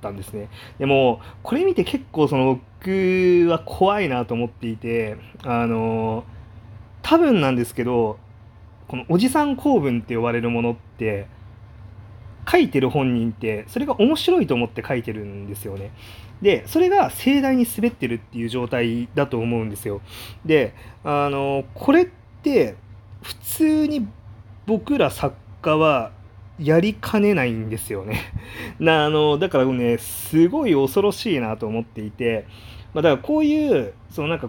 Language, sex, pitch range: Japanese, male, 105-150 Hz